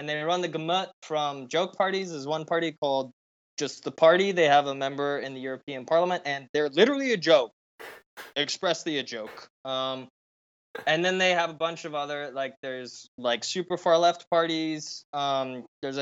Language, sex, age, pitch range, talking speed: English, male, 10-29, 135-175 Hz, 185 wpm